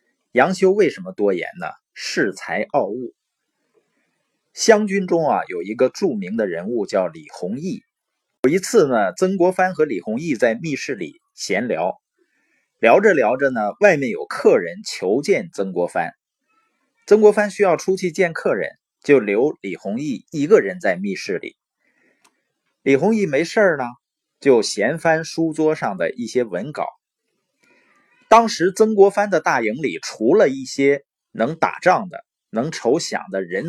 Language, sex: Chinese, male